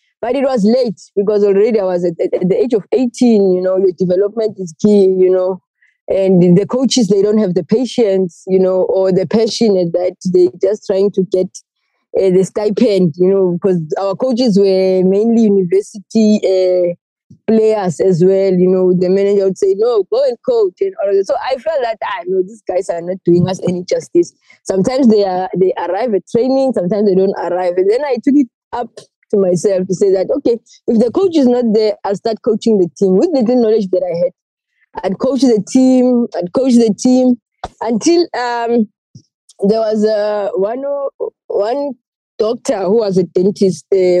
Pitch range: 185-235 Hz